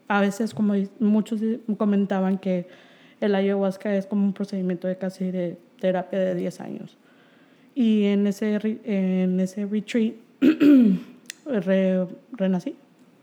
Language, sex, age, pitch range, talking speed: Spanish, female, 20-39, 200-240 Hz, 125 wpm